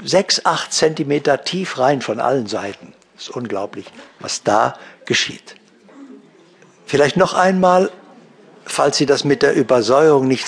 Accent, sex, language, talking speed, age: German, male, German, 135 wpm, 60-79